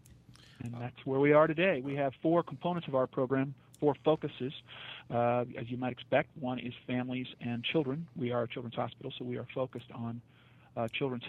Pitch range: 120-135 Hz